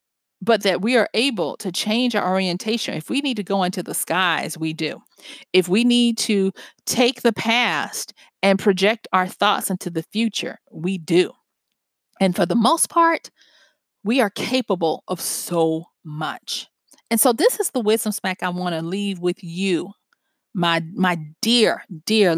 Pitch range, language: 185-240 Hz, English